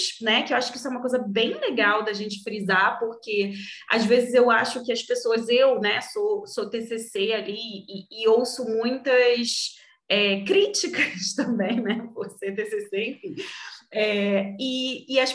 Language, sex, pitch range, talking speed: Portuguese, female, 205-265 Hz, 160 wpm